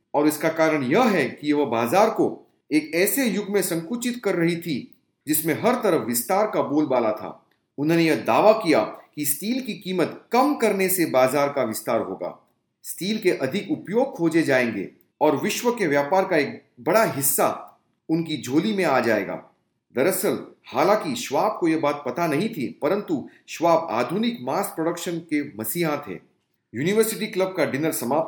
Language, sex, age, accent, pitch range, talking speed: English, male, 40-59, Indian, 145-190 Hz, 125 wpm